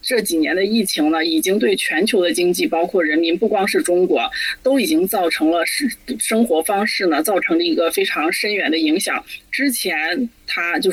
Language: Chinese